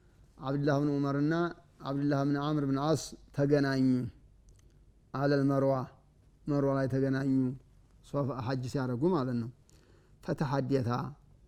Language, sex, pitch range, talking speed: Amharic, male, 130-145 Hz, 110 wpm